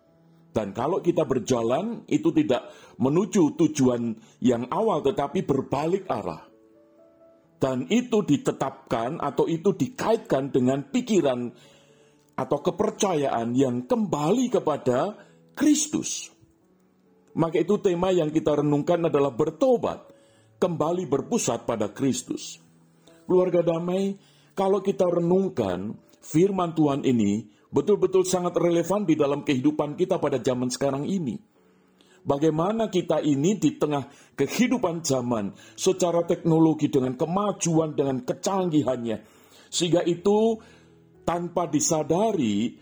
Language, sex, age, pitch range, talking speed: Indonesian, male, 50-69, 135-200 Hz, 105 wpm